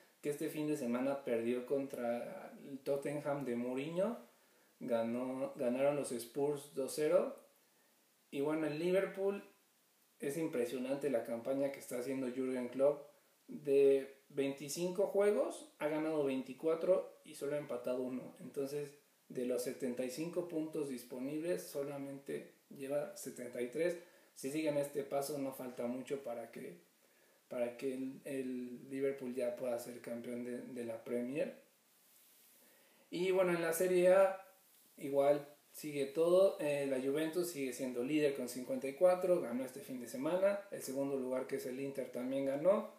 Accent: Mexican